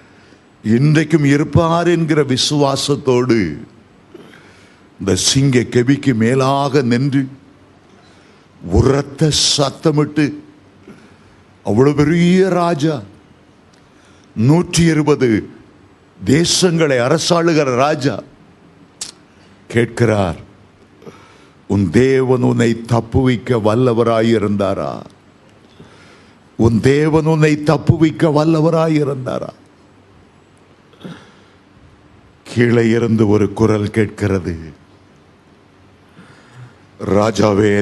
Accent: native